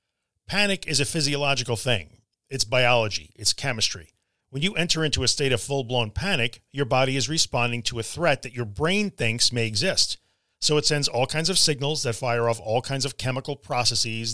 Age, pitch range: 40-59, 115-155 Hz